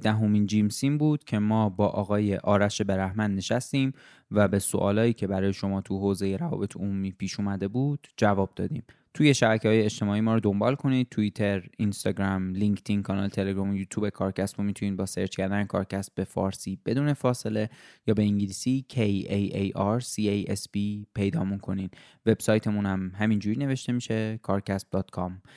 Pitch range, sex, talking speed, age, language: 100-110 Hz, male, 165 wpm, 20-39, Persian